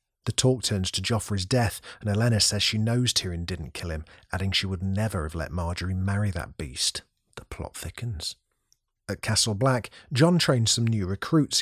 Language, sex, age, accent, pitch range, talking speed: English, male, 40-59, British, 95-120 Hz, 185 wpm